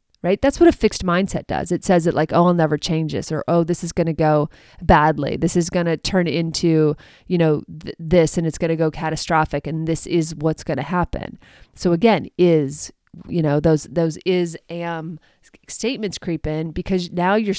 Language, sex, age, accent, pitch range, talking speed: English, female, 30-49, American, 160-190 Hz, 200 wpm